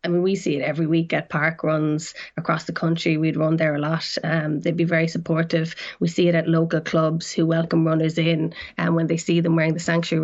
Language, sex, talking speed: English, female, 250 wpm